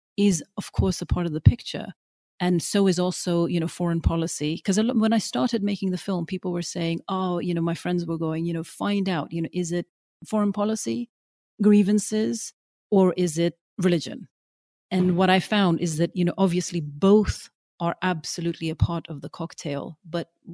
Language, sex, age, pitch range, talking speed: English, female, 40-59, 160-185 Hz, 195 wpm